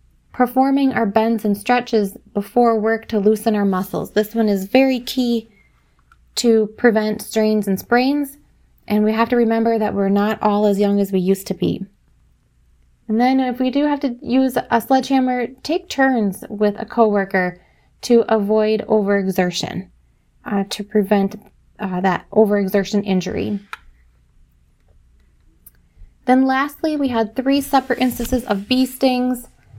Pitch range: 200-245 Hz